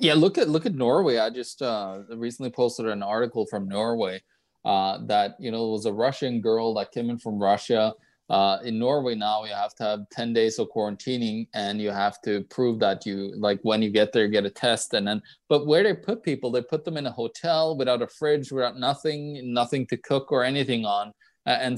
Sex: male